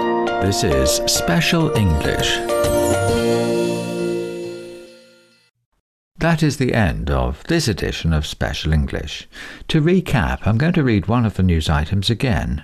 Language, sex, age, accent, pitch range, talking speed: English, male, 60-79, British, 85-120 Hz, 125 wpm